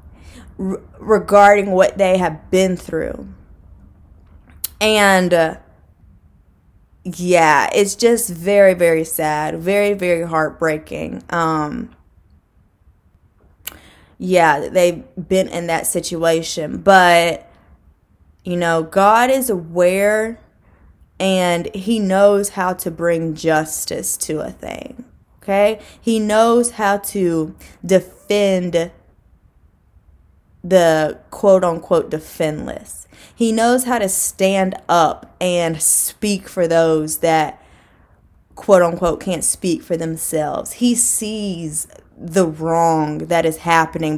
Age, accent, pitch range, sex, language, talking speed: 10-29, American, 150-195 Hz, female, English, 100 wpm